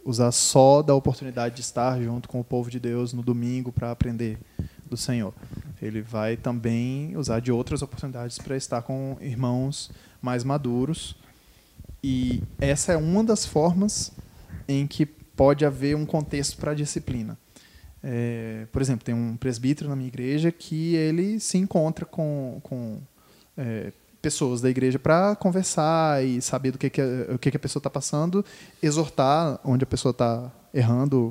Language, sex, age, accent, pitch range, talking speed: Portuguese, male, 20-39, Brazilian, 120-145 Hz, 155 wpm